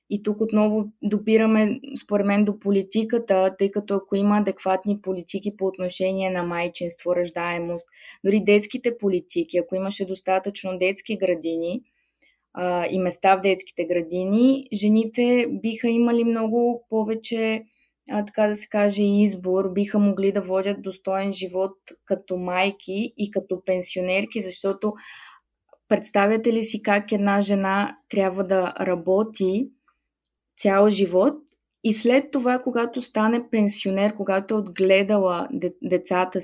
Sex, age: female, 20-39